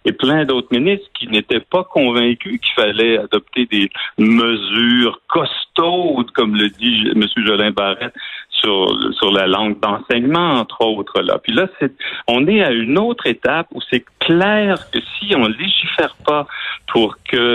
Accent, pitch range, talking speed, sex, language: French, 105-170 Hz, 160 wpm, male, French